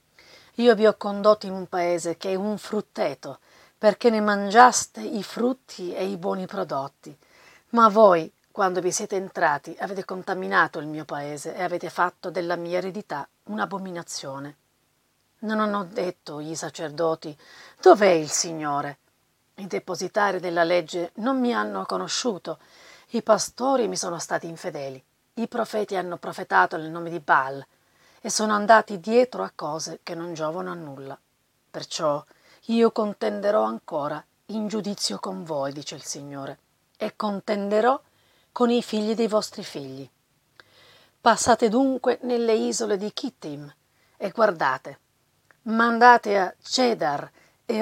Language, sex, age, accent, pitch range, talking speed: Italian, female, 40-59, native, 165-220 Hz, 140 wpm